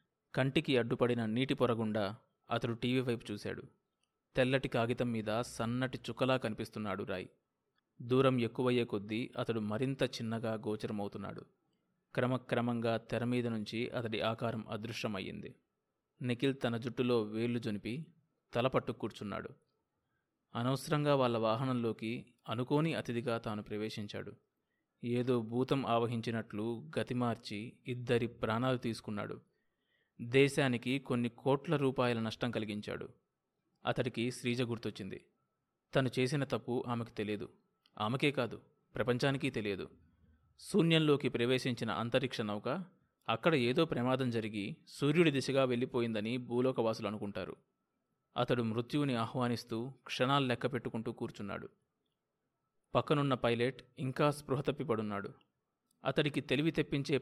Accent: native